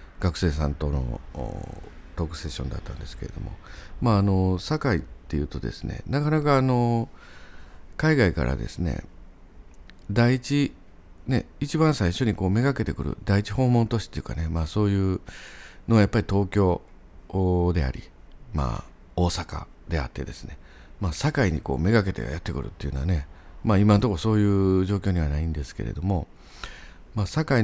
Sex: male